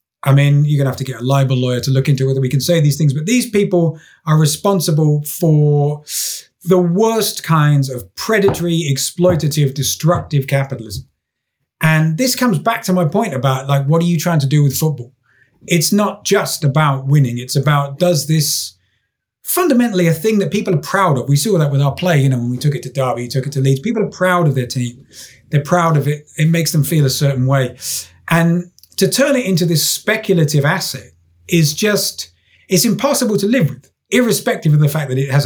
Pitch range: 135-185 Hz